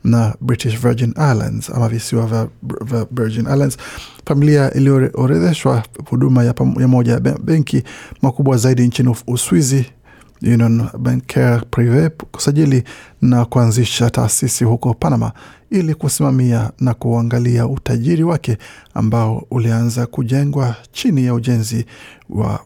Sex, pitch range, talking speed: male, 115-135 Hz, 115 wpm